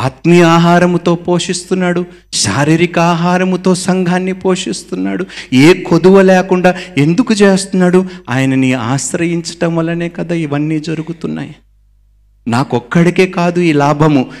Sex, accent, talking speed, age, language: male, native, 90 wpm, 50-69, Telugu